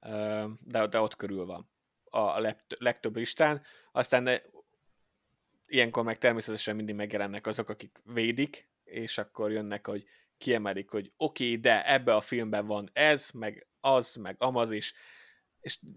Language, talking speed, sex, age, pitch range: Hungarian, 140 wpm, male, 30-49, 105-120 Hz